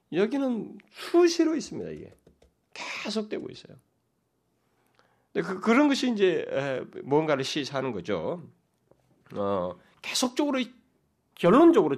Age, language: 30-49, Korean